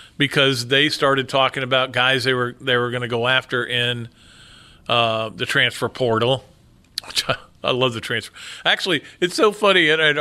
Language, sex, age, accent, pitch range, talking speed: English, male, 50-69, American, 125-180 Hz, 170 wpm